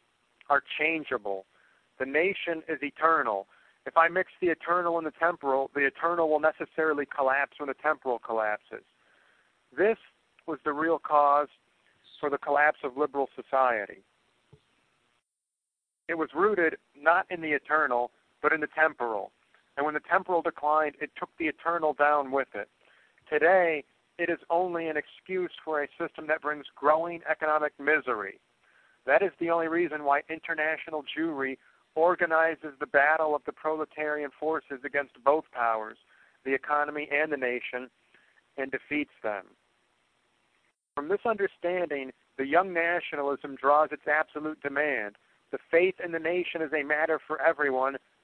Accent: American